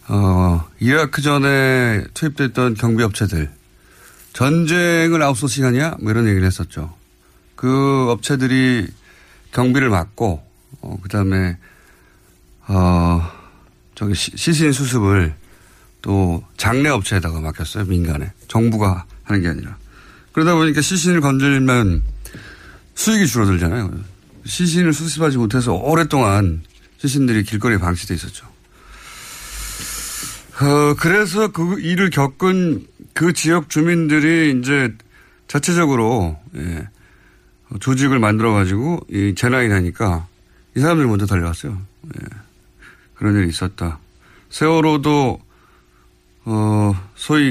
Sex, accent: male, native